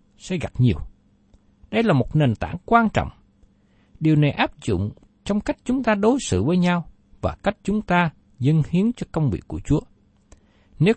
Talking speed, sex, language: 185 wpm, male, Vietnamese